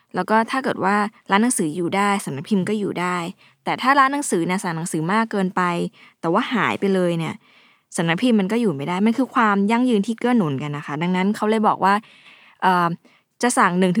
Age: 20-39